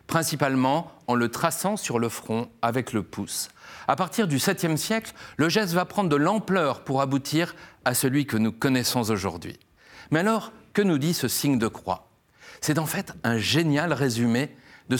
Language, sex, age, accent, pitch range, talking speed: French, male, 40-59, French, 120-170 Hz, 180 wpm